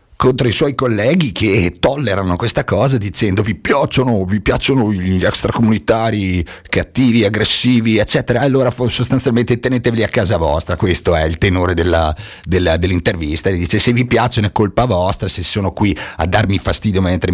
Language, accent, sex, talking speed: Italian, native, male, 160 wpm